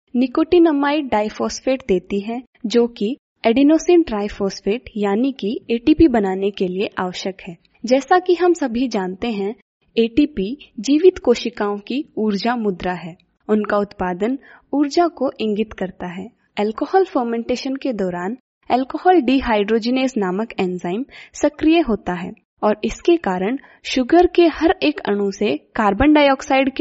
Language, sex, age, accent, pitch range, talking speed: English, female, 20-39, Indian, 195-280 Hz, 100 wpm